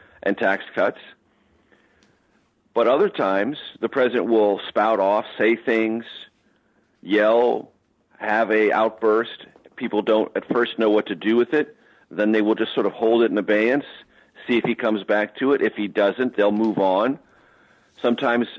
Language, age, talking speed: English, 40-59, 165 wpm